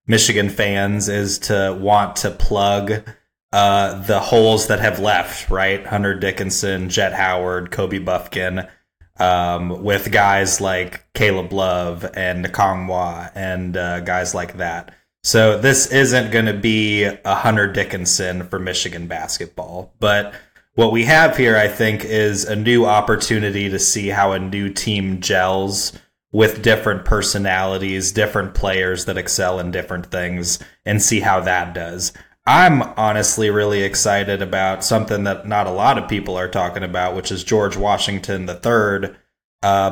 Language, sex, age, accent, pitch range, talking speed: English, male, 20-39, American, 95-105 Hz, 150 wpm